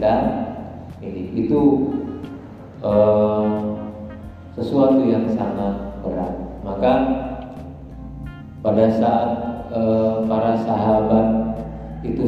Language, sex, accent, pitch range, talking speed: Indonesian, male, native, 105-125 Hz, 70 wpm